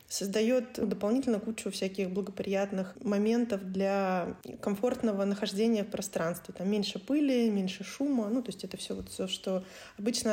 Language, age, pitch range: Russian, 20-39, 190-230 Hz